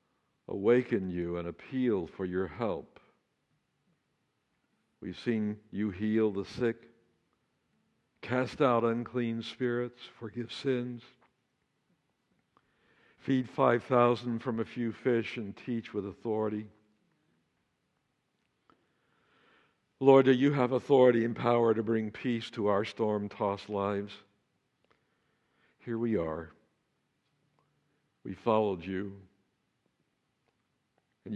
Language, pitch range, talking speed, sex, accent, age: English, 105-125 Hz, 95 wpm, male, American, 60-79